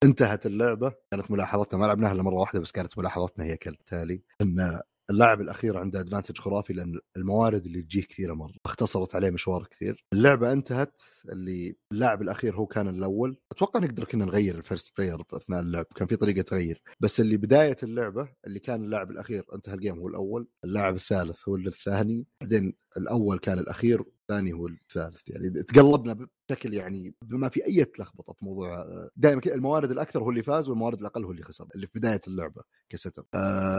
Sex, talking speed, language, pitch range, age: male, 180 wpm, Arabic, 90-115 Hz, 30-49